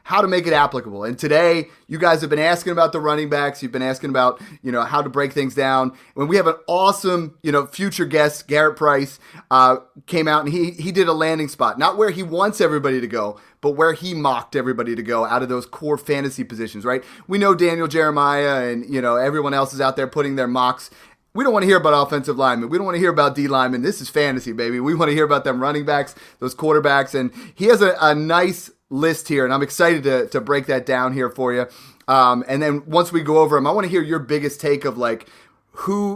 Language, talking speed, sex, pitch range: English, 250 wpm, male, 130-160 Hz